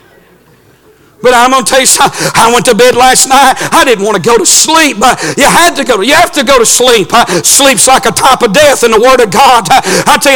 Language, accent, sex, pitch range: English, American, male, 250-315 Hz